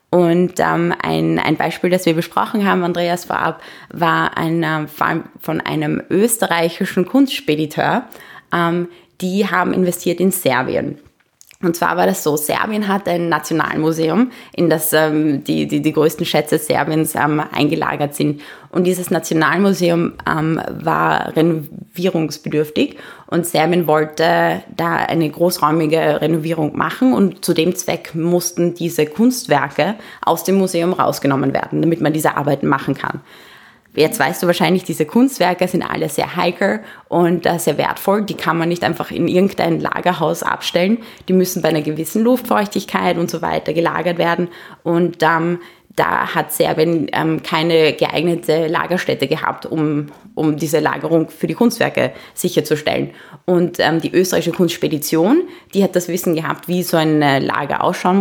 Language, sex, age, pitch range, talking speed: German, female, 20-39, 155-180 Hz, 145 wpm